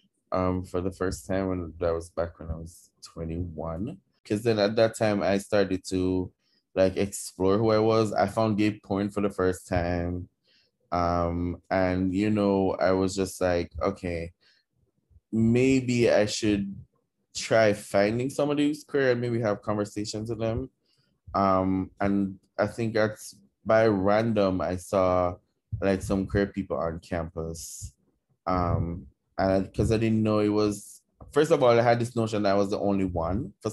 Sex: male